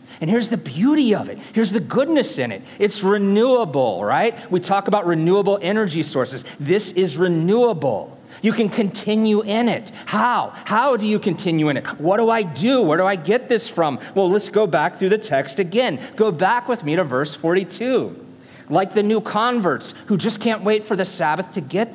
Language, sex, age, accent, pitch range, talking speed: English, male, 40-59, American, 175-220 Hz, 200 wpm